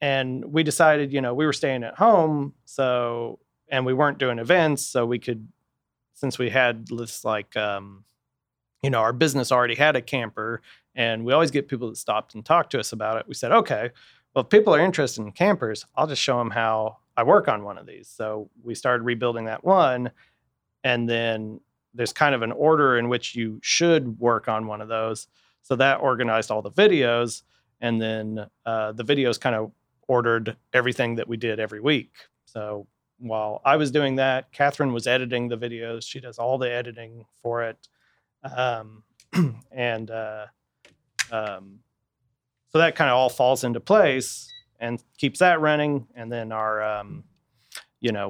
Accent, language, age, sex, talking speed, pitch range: American, English, 30-49, male, 185 wpm, 110-135 Hz